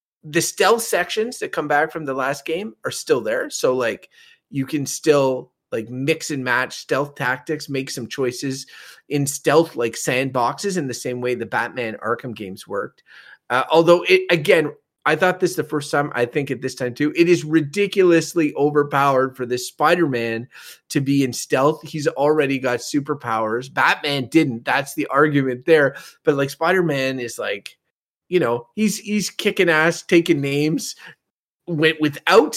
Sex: male